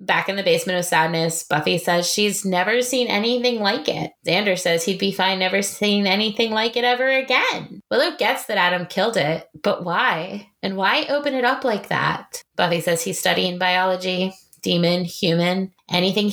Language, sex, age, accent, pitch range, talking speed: English, female, 20-39, American, 175-255 Hz, 180 wpm